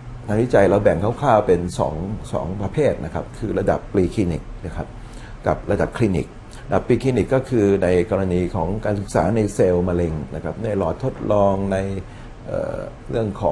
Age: 60-79